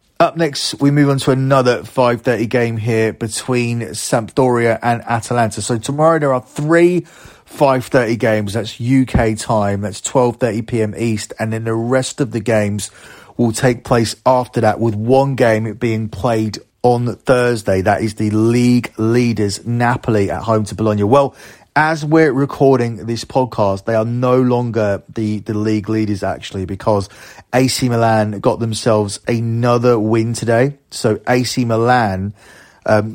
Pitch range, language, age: 110-125 Hz, English, 30-49